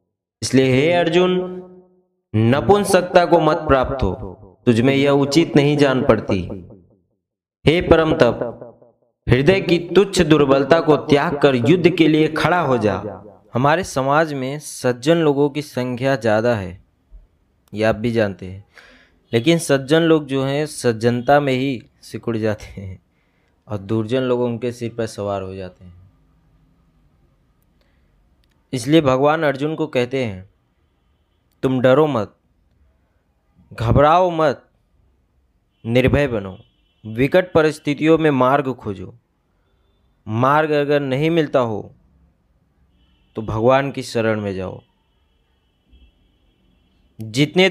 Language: Hindi